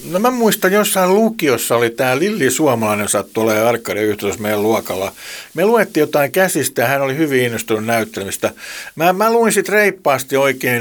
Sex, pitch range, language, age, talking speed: male, 110-145 Hz, Finnish, 60-79, 180 wpm